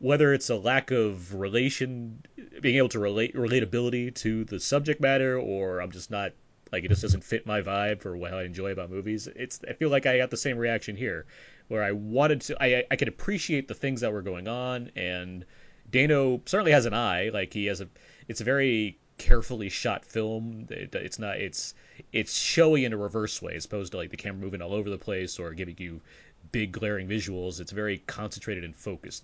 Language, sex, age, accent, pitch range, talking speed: English, male, 30-49, American, 95-125 Hz, 215 wpm